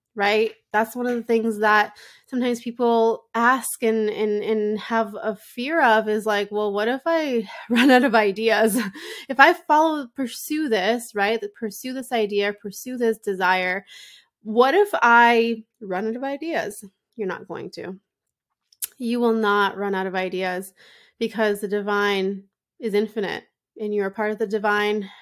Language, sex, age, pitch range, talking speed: English, female, 20-39, 200-230 Hz, 165 wpm